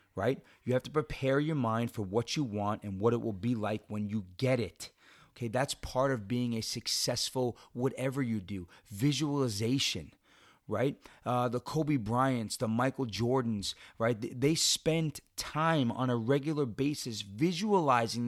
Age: 30-49